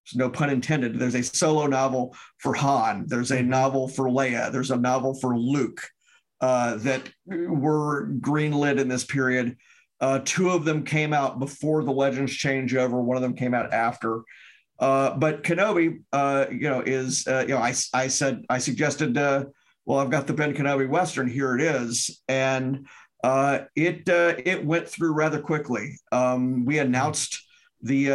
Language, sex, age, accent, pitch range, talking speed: English, male, 50-69, American, 125-145 Hz, 175 wpm